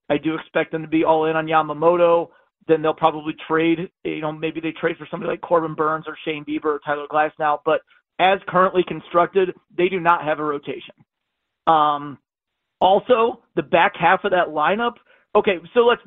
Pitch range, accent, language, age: 155-190 Hz, American, English, 40-59